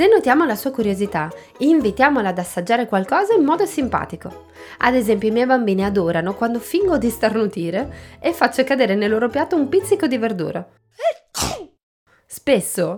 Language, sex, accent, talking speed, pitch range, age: Italian, female, native, 155 wpm, 185-265 Hz, 20-39